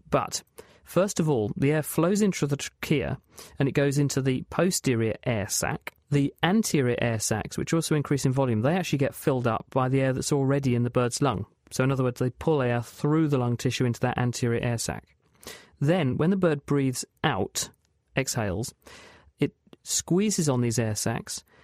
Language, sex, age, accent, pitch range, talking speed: English, male, 40-59, British, 120-150 Hz, 195 wpm